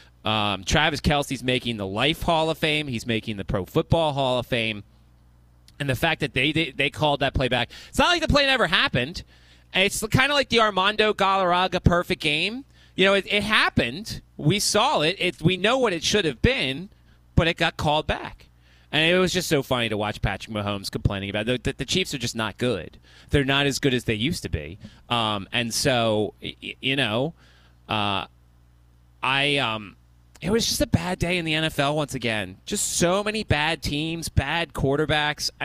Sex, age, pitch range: male, 30-49, 110-170 Hz